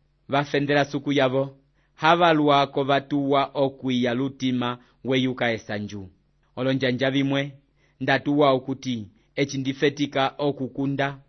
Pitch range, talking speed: 135-155 Hz, 80 wpm